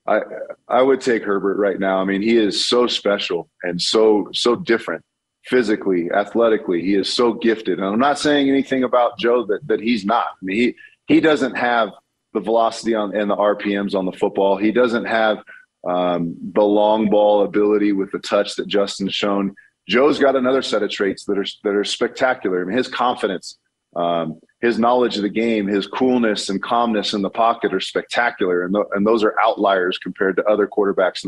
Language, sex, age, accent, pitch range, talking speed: English, male, 30-49, American, 100-120 Hz, 200 wpm